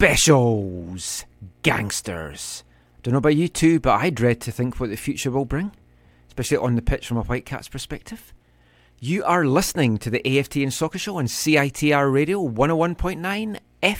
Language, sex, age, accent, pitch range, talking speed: English, male, 40-59, British, 110-145 Hz, 165 wpm